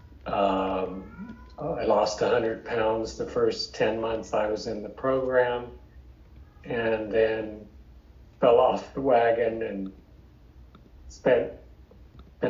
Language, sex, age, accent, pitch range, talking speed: English, male, 40-59, American, 75-115 Hz, 110 wpm